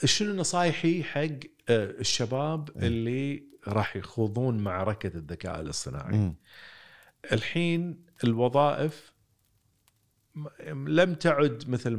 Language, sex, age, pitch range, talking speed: Arabic, male, 40-59, 100-145 Hz, 75 wpm